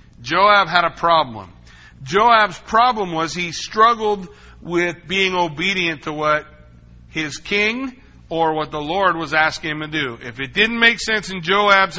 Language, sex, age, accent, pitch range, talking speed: English, male, 60-79, American, 140-210 Hz, 160 wpm